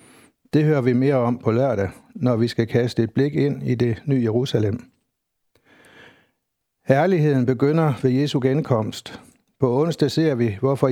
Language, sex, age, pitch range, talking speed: Danish, male, 60-79, 115-145 Hz, 155 wpm